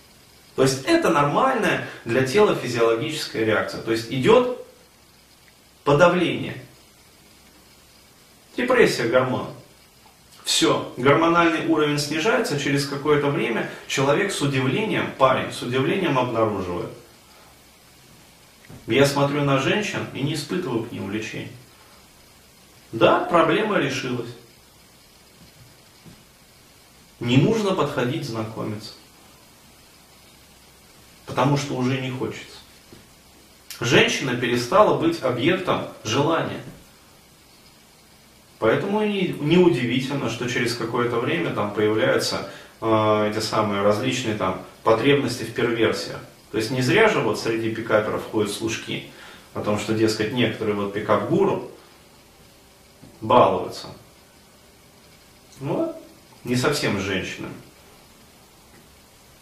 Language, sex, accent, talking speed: Russian, male, native, 95 wpm